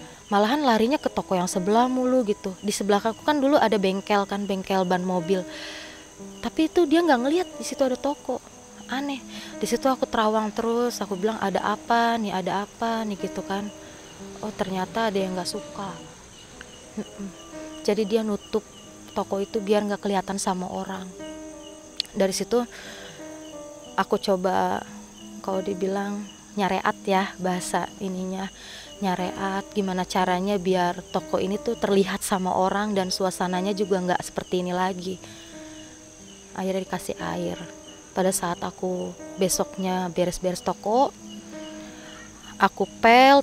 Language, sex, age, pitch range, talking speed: Indonesian, female, 20-39, 185-225 Hz, 135 wpm